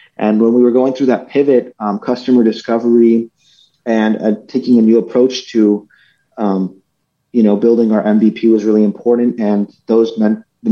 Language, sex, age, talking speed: English, male, 30-49, 175 wpm